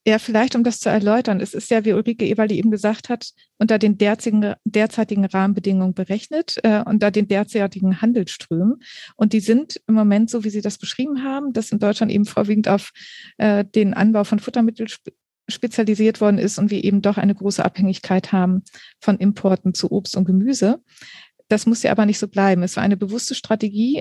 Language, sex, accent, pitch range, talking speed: German, female, German, 200-220 Hz, 190 wpm